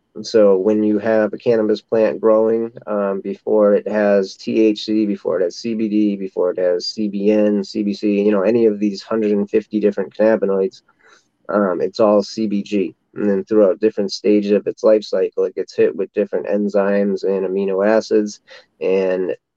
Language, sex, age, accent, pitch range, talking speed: English, male, 30-49, American, 100-140 Hz, 165 wpm